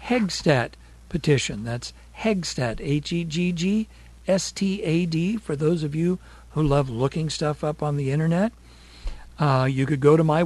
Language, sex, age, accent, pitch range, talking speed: English, male, 60-79, American, 130-175 Hz, 130 wpm